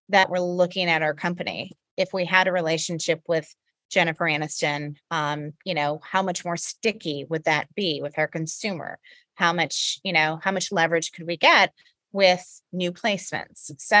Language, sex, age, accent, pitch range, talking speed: English, female, 30-49, American, 160-190 Hz, 175 wpm